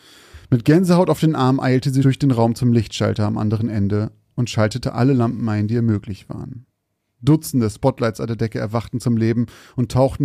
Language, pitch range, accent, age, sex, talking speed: German, 110-135 Hz, German, 30-49, male, 200 wpm